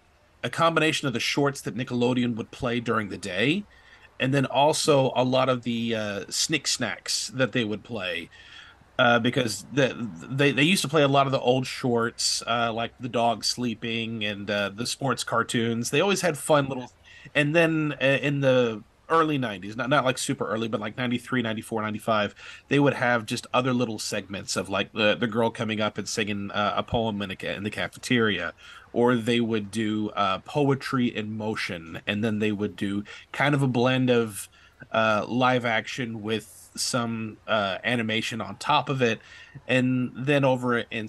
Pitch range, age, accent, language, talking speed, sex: 105-130 Hz, 30-49, American, English, 190 wpm, male